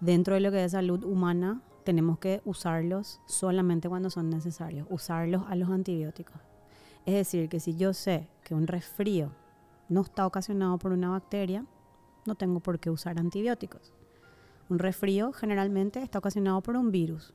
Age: 20-39